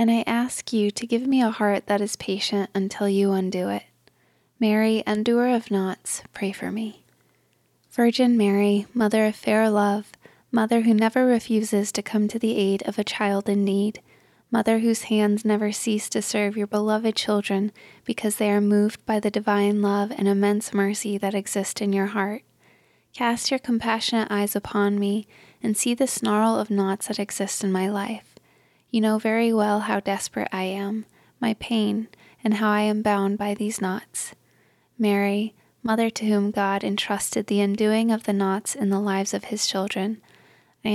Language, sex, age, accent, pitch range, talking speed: English, female, 20-39, American, 200-220 Hz, 180 wpm